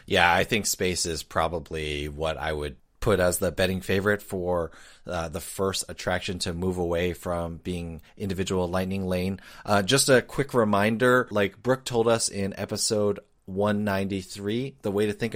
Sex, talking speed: male, 170 wpm